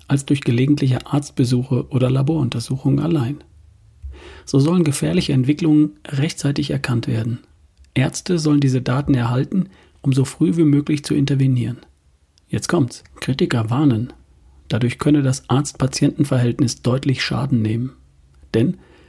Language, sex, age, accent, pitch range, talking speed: German, male, 40-59, German, 120-145 Hz, 120 wpm